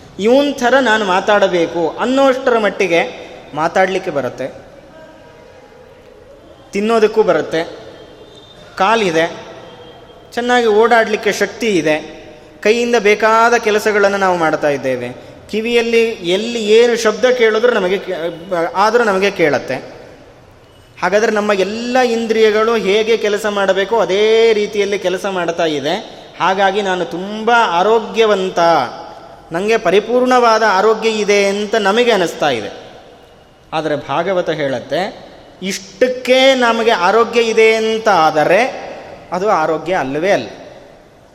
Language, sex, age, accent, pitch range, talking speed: Kannada, male, 20-39, native, 175-230 Hz, 95 wpm